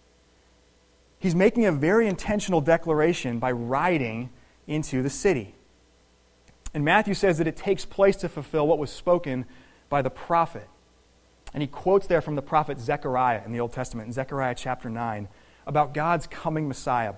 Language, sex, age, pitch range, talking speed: English, male, 30-49, 115-170 Hz, 160 wpm